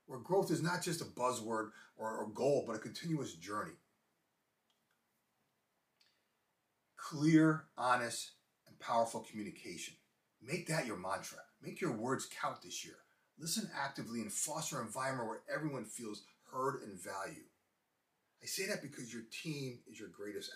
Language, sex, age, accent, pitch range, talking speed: English, male, 30-49, American, 125-175 Hz, 145 wpm